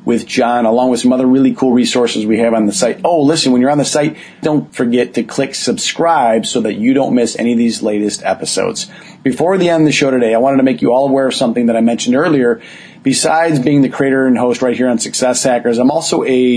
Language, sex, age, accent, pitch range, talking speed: English, male, 40-59, American, 115-135 Hz, 255 wpm